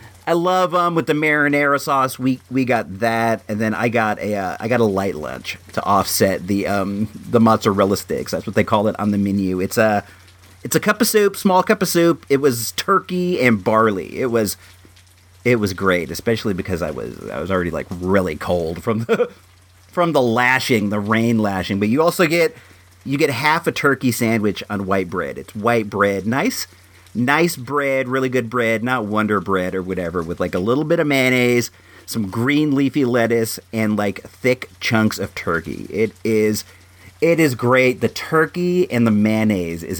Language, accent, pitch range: English, American, 95-130 Hz